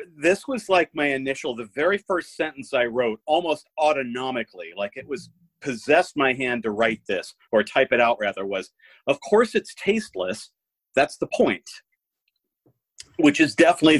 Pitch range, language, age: 130-210 Hz, English, 40-59